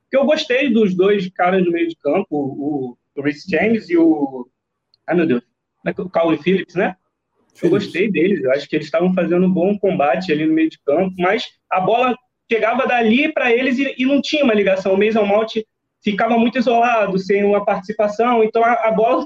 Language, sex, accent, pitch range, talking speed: Portuguese, male, Brazilian, 175-230 Hz, 205 wpm